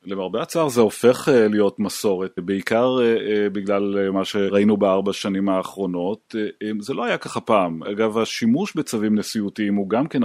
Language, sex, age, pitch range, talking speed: Hebrew, male, 30-49, 100-115 Hz, 145 wpm